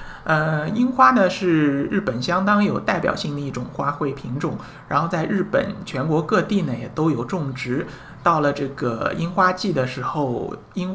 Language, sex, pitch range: Chinese, male, 135-185 Hz